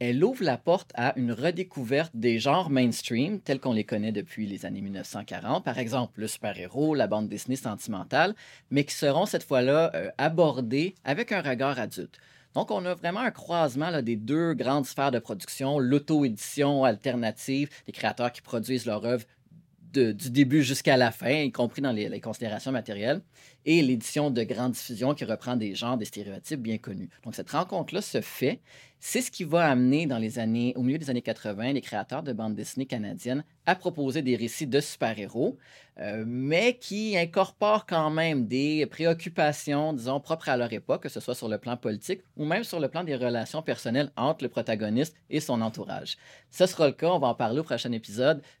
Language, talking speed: French, 200 wpm